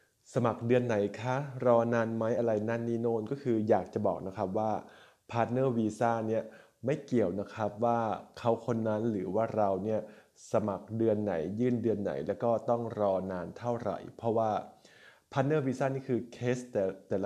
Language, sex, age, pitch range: Thai, male, 20-39, 105-120 Hz